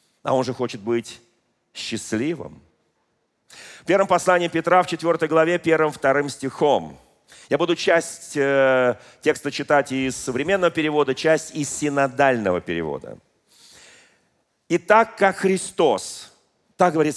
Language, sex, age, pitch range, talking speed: Russian, male, 40-59, 140-180 Hz, 120 wpm